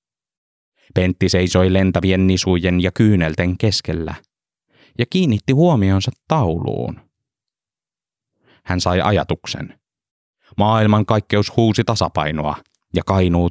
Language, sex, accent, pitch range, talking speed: Finnish, male, native, 85-115 Hz, 90 wpm